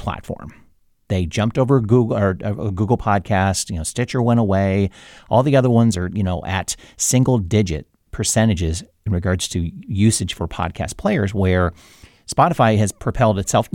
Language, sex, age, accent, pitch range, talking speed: English, male, 40-59, American, 90-120 Hz, 155 wpm